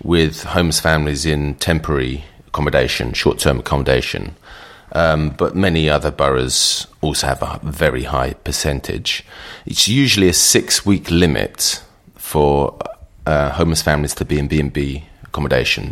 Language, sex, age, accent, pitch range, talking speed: English, male, 30-49, British, 75-95 Hz, 125 wpm